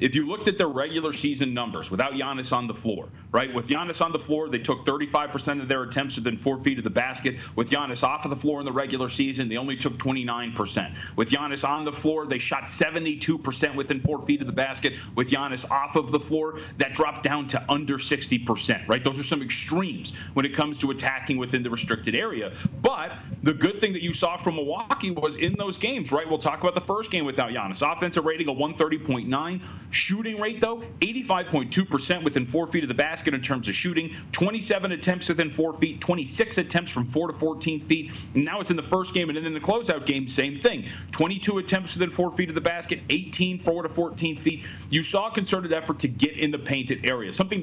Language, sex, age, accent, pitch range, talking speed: English, male, 30-49, American, 135-170 Hz, 225 wpm